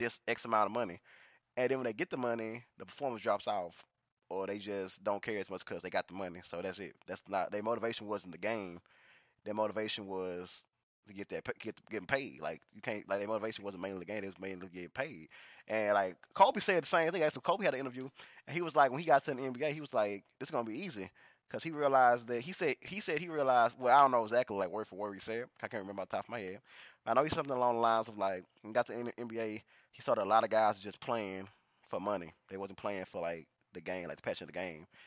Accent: American